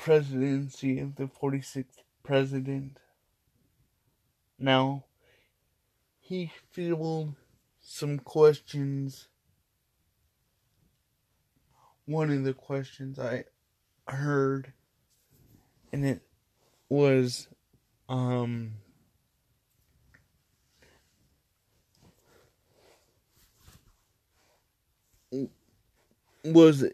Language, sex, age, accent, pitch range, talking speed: English, male, 20-39, American, 125-140 Hz, 50 wpm